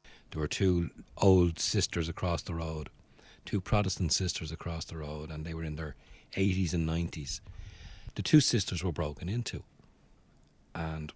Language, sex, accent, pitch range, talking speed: English, male, Irish, 80-100 Hz, 155 wpm